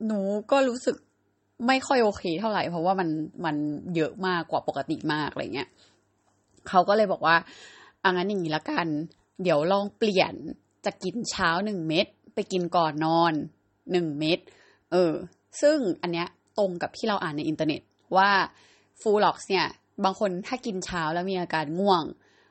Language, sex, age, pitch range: Thai, female, 20-39, 160-205 Hz